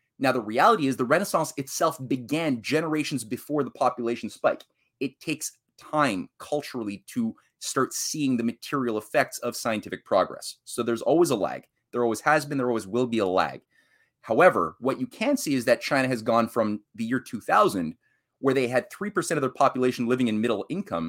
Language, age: English, 30-49